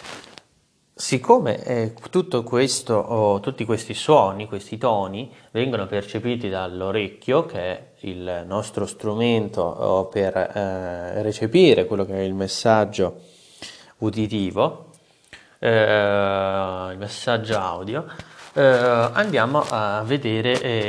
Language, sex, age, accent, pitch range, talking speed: Italian, male, 20-39, native, 100-125 Hz, 90 wpm